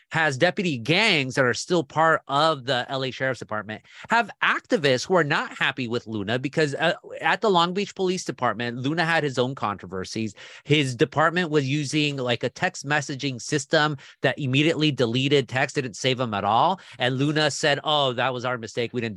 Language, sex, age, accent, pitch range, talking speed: English, male, 30-49, American, 130-170 Hz, 195 wpm